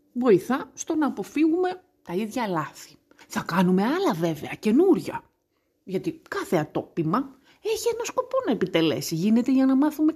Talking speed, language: 140 wpm, Greek